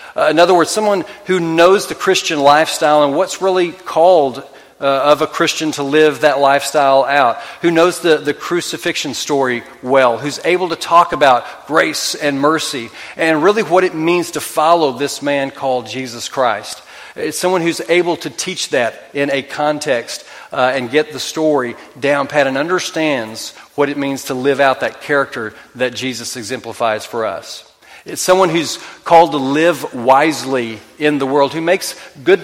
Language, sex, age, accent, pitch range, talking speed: English, male, 40-59, American, 135-165 Hz, 175 wpm